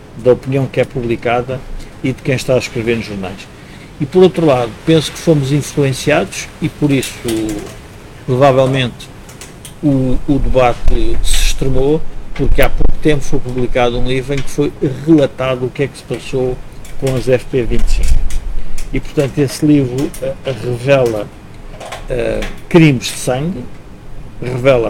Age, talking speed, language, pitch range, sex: 50-69, 150 wpm, Portuguese, 125-150 Hz, male